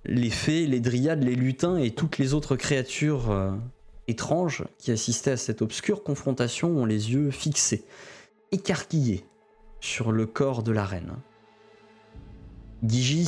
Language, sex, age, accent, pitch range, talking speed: French, male, 20-39, French, 115-155 Hz, 140 wpm